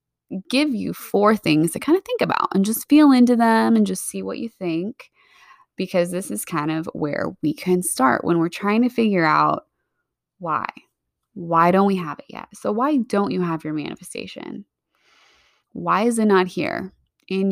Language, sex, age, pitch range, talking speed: English, female, 20-39, 160-210 Hz, 190 wpm